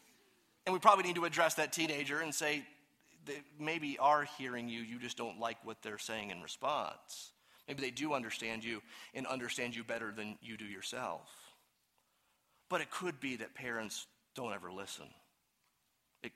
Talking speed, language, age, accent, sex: 170 wpm, English, 30-49, American, male